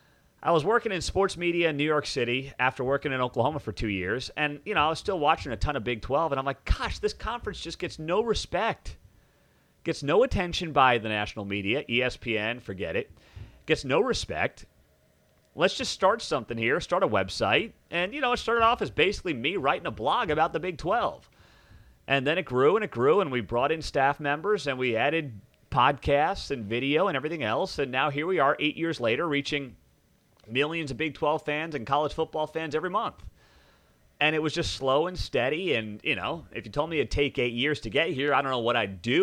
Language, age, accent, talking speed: English, 40-59, American, 220 wpm